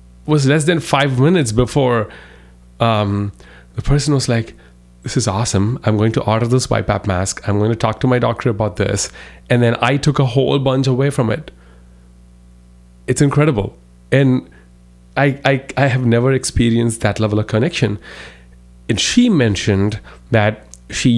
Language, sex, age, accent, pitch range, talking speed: English, male, 30-49, Indian, 95-120 Hz, 165 wpm